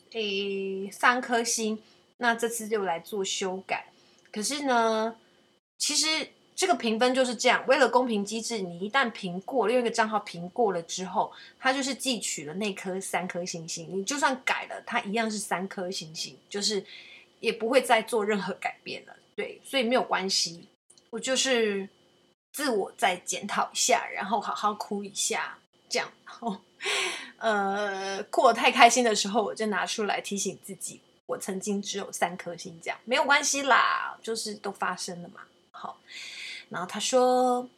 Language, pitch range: Chinese, 195-250 Hz